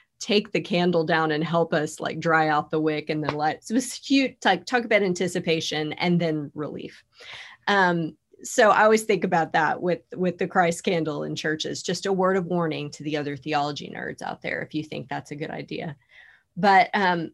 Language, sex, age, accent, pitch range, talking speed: English, female, 30-49, American, 160-190 Hz, 215 wpm